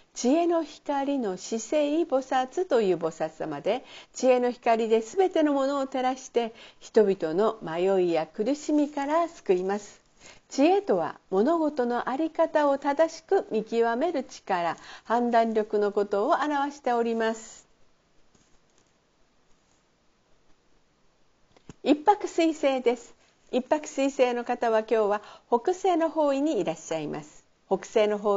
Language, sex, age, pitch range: Japanese, female, 50-69, 200-300 Hz